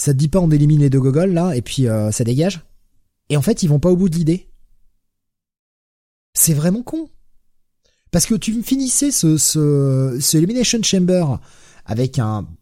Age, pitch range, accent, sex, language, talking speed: 30-49, 105-150 Hz, French, male, French, 190 wpm